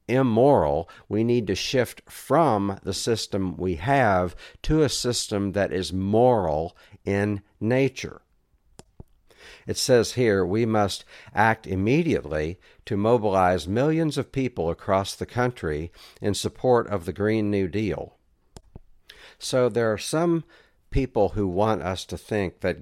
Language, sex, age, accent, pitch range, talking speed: English, male, 60-79, American, 90-115 Hz, 135 wpm